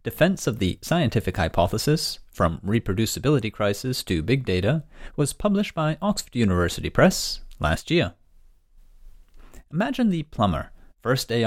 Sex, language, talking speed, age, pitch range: male, English, 125 wpm, 30-49, 95-130 Hz